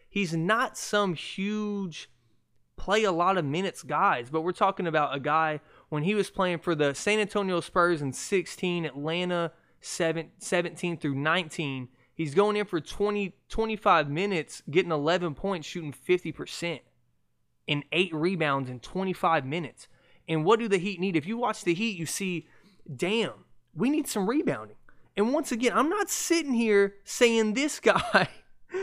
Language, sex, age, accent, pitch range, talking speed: English, male, 20-39, American, 150-200 Hz, 155 wpm